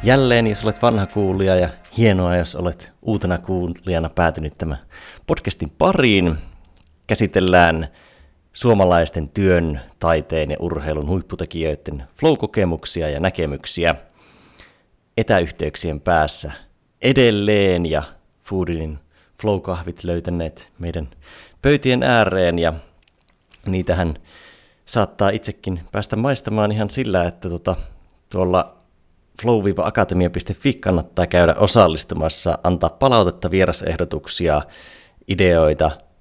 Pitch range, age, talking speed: 80-100 Hz, 30-49, 90 wpm